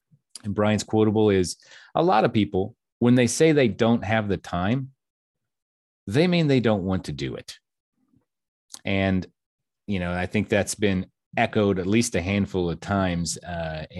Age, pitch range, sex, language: 30-49, 90-125 Hz, male, English